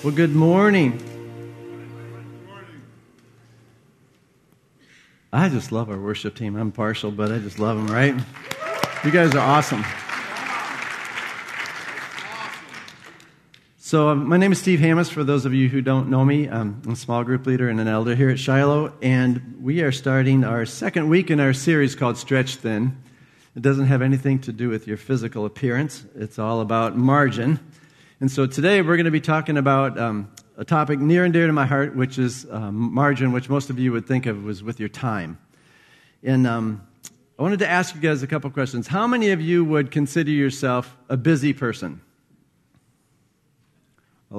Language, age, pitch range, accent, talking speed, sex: English, 50-69, 120-155 Hz, American, 175 wpm, male